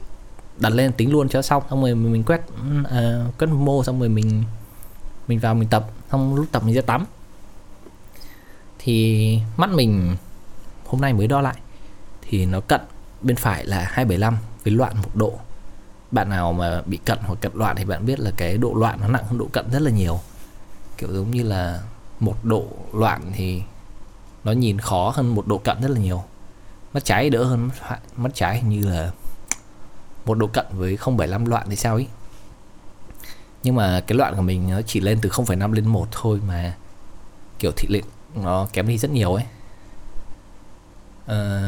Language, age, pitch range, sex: Vietnamese, 20-39, 100-120 Hz, male